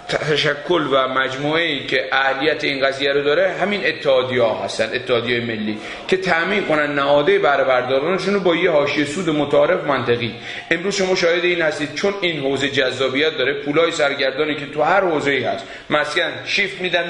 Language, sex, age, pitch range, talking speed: Persian, male, 40-59, 135-185 Hz, 170 wpm